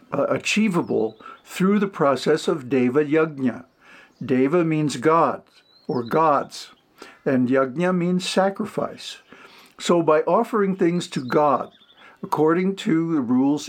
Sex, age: male, 60-79